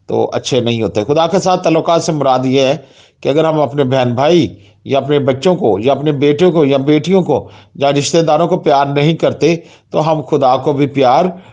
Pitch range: 125-175 Hz